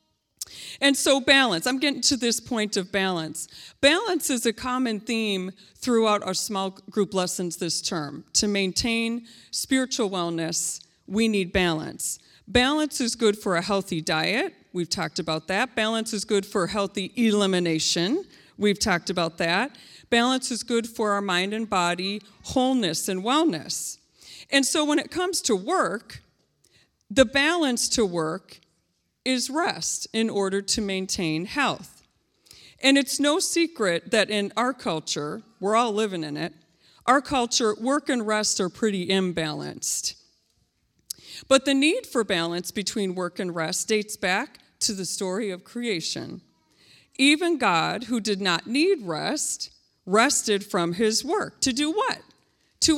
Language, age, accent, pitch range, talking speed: English, 40-59, American, 185-260 Hz, 150 wpm